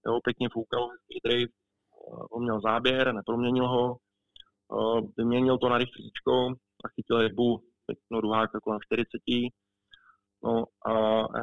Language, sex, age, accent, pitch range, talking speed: Czech, male, 20-39, native, 110-120 Hz, 125 wpm